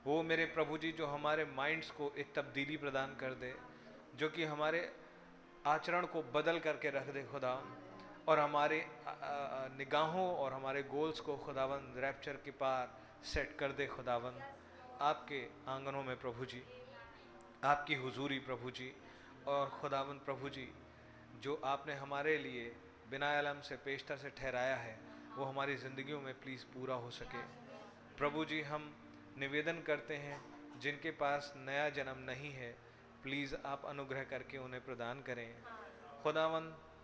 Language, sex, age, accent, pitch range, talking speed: Hindi, male, 30-49, native, 130-150 Hz, 145 wpm